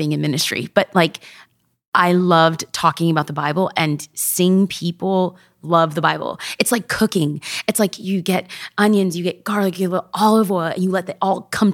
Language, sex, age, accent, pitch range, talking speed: English, female, 20-39, American, 170-220 Hz, 200 wpm